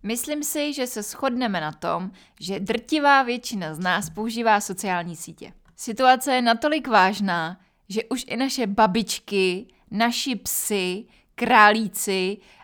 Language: Czech